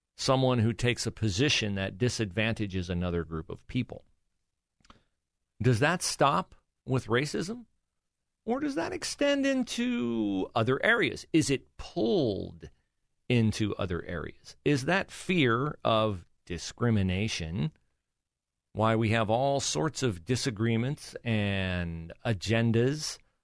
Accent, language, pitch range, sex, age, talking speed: American, English, 95-135 Hz, male, 40-59, 110 wpm